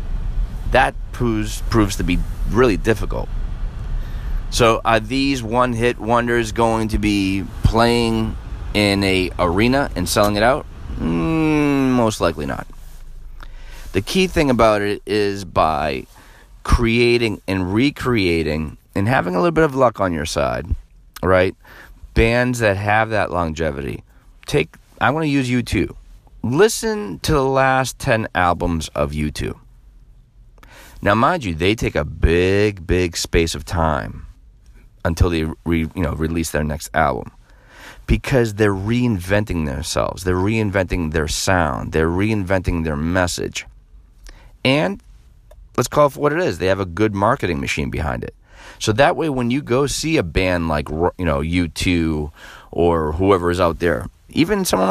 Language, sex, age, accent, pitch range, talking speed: English, male, 30-49, American, 85-120 Hz, 150 wpm